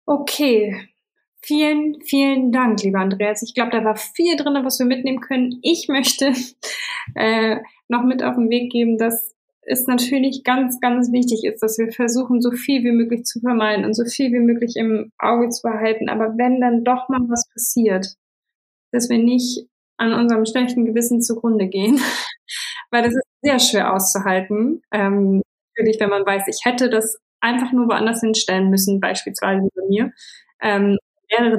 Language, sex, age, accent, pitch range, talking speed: German, female, 20-39, German, 210-245 Hz, 170 wpm